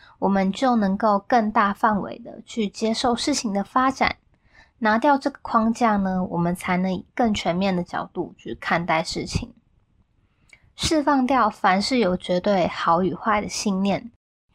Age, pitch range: 20-39, 195-240 Hz